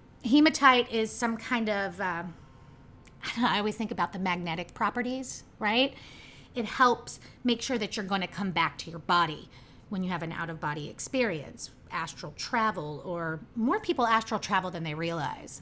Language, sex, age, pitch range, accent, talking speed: English, female, 30-49, 185-250 Hz, American, 165 wpm